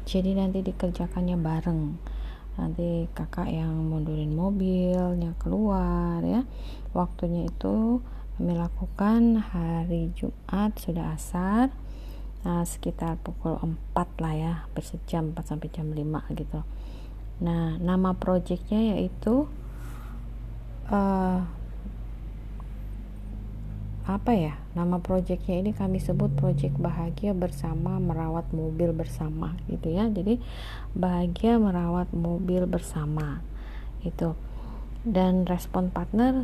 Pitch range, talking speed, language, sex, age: 160-185 Hz, 100 wpm, Indonesian, female, 30-49